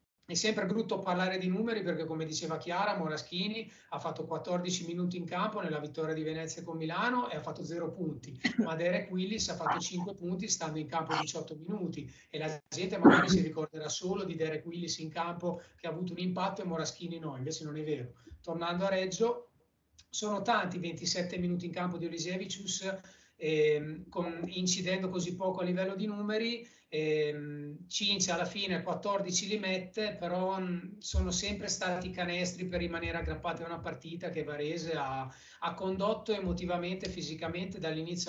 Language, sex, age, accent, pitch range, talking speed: Italian, male, 30-49, native, 160-195 Hz, 170 wpm